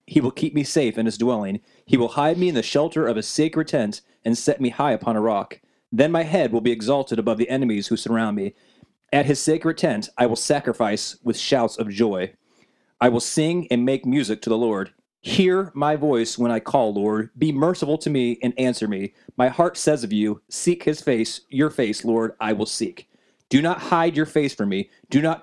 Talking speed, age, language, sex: 225 wpm, 30-49, English, male